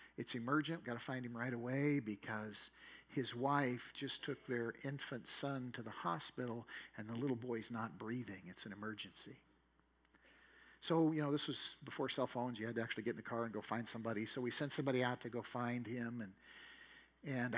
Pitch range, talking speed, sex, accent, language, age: 115-140 Hz, 200 wpm, male, American, English, 50-69